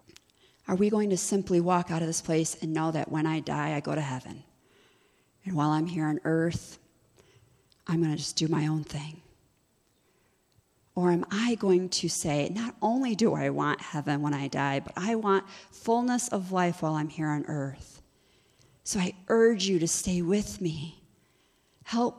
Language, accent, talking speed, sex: English, American, 185 wpm, female